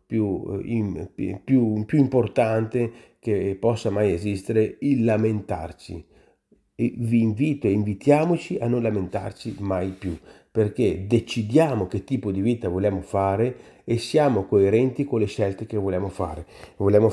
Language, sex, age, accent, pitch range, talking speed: Italian, male, 40-59, native, 100-140 Hz, 135 wpm